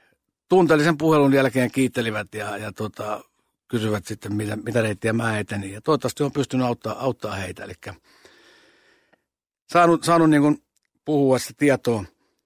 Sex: male